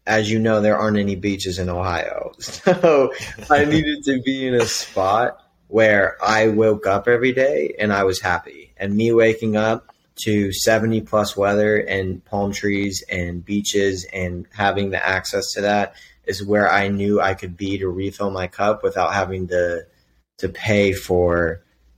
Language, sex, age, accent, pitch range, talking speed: English, male, 20-39, American, 95-110 Hz, 170 wpm